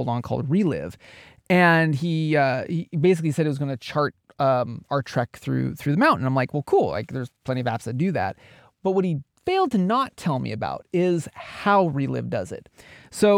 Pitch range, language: 135-175 Hz, English